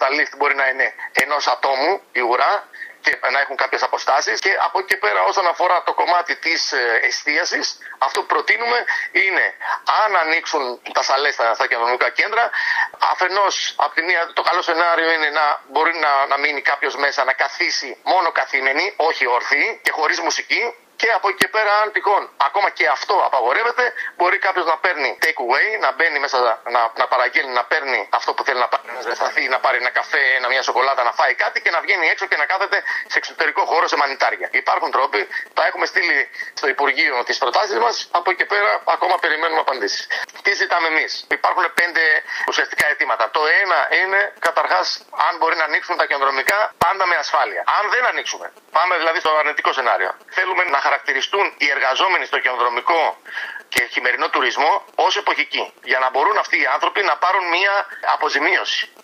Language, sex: Greek, male